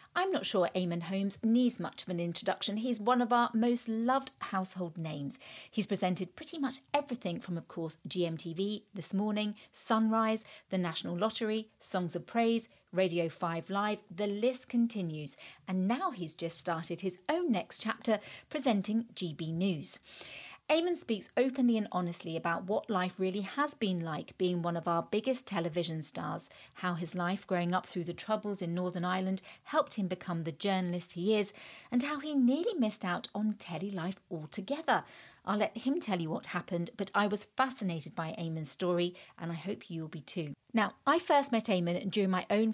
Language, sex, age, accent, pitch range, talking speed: English, female, 40-59, British, 175-225 Hz, 180 wpm